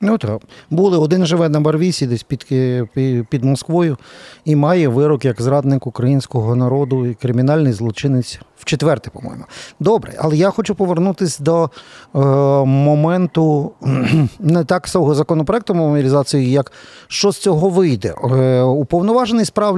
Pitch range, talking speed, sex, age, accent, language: 130-170 Hz, 130 wpm, male, 40-59, native, Ukrainian